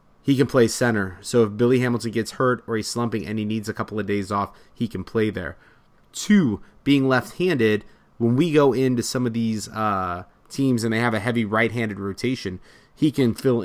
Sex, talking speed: male, 205 wpm